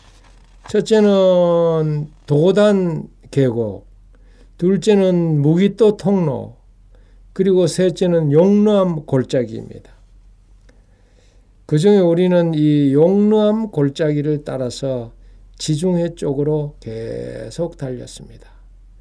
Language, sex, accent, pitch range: Korean, male, native, 105-155 Hz